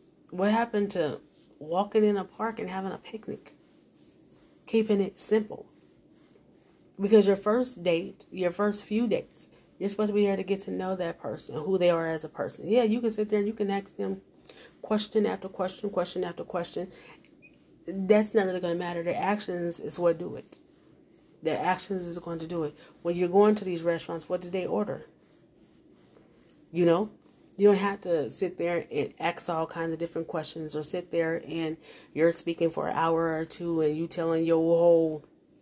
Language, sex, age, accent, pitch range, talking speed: English, female, 30-49, American, 165-200 Hz, 190 wpm